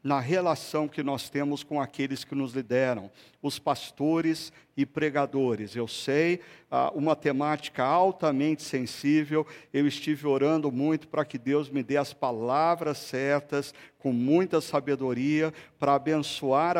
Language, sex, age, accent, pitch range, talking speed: Portuguese, male, 50-69, Brazilian, 140-165 Hz, 135 wpm